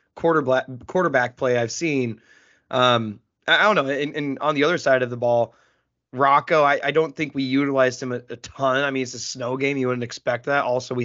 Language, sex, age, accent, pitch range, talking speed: English, male, 20-39, American, 125-145 Hz, 215 wpm